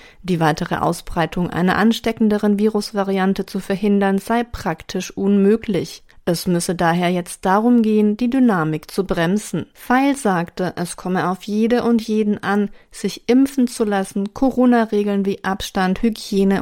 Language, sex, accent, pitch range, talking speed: German, female, German, 180-220 Hz, 135 wpm